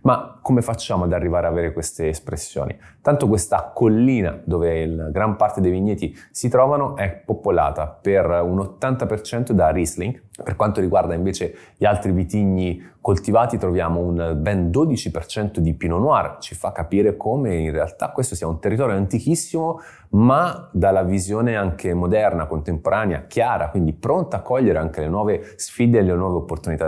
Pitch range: 85-115 Hz